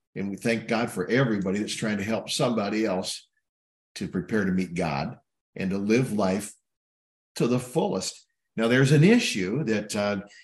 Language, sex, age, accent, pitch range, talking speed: English, male, 50-69, American, 110-140 Hz, 170 wpm